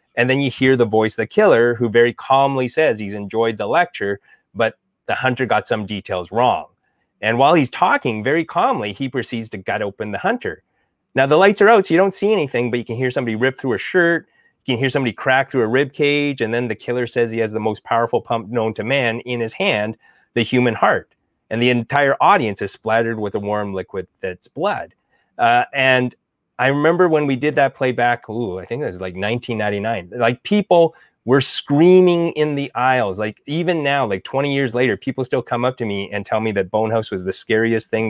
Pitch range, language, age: 115-140 Hz, English, 30-49